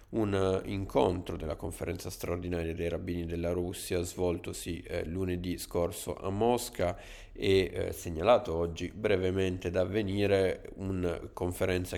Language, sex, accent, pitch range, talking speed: Italian, male, native, 85-95 Hz, 120 wpm